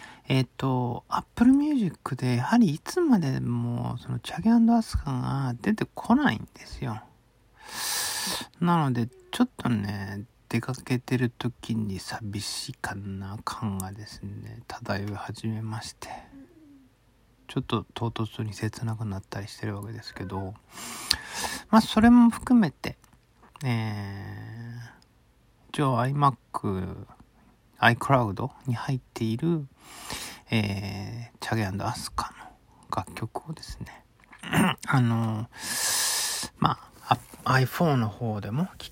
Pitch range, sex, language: 110-170 Hz, male, Japanese